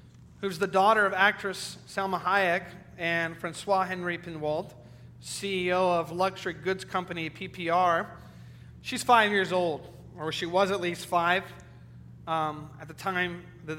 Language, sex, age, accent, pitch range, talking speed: English, male, 40-59, American, 160-215 Hz, 140 wpm